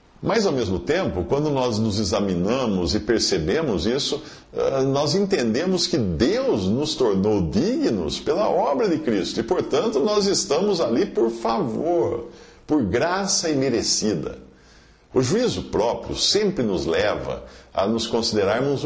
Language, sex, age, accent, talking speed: Portuguese, male, 50-69, Brazilian, 130 wpm